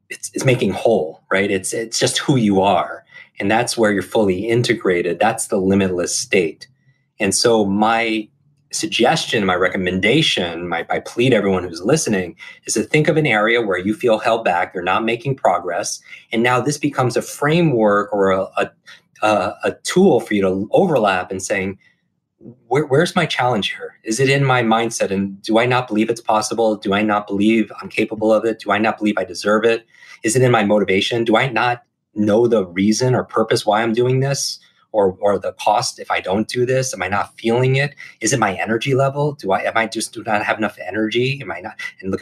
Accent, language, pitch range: American, English, 100-125 Hz